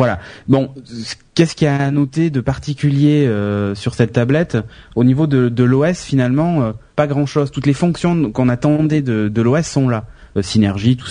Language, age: French, 20-39